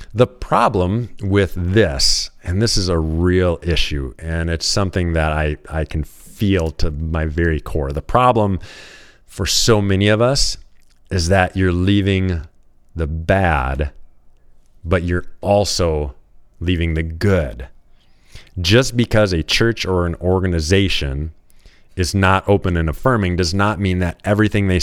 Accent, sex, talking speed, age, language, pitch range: American, male, 145 wpm, 30-49, English, 80-105 Hz